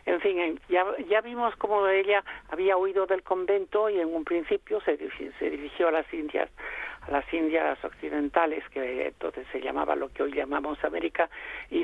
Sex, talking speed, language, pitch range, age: male, 175 wpm, Spanish, 155-225 Hz, 60-79